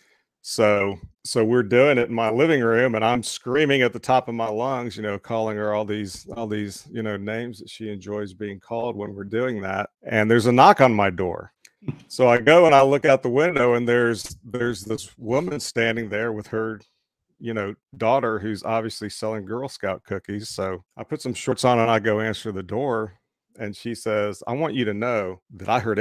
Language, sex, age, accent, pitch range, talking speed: English, male, 40-59, American, 100-115 Hz, 220 wpm